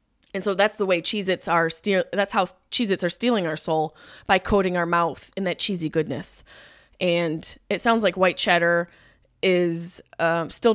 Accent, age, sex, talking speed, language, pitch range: American, 20-39, female, 180 wpm, English, 170-215 Hz